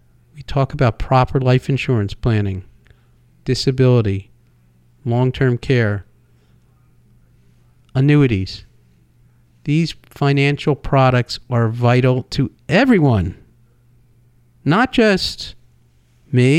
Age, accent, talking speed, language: 50-69, American, 70 wpm, English